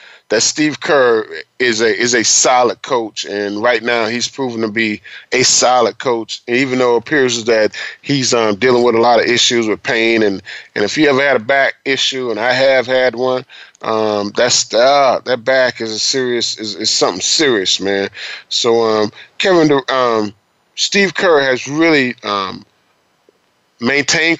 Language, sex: English, male